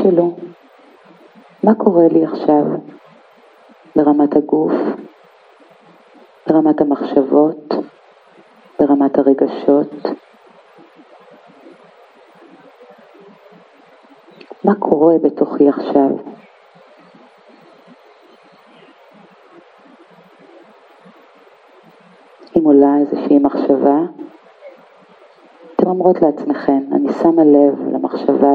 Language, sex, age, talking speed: Hebrew, female, 50-69, 55 wpm